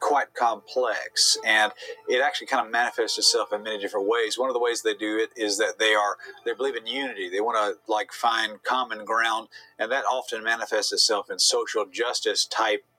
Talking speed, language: 205 wpm, English